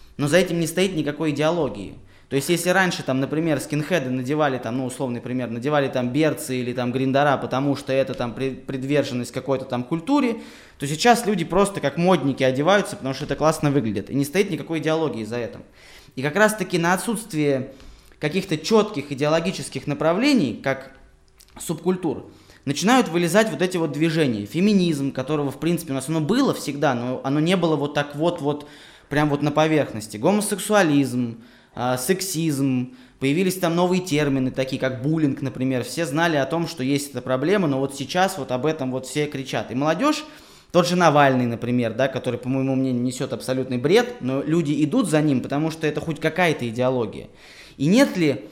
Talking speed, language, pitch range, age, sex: 175 wpm, Russian, 130-170 Hz, 20-39, male